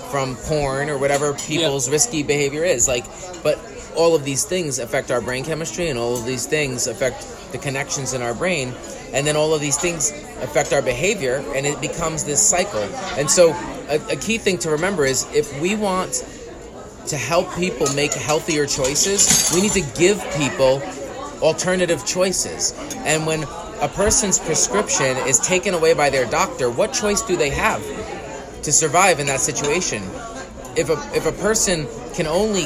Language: English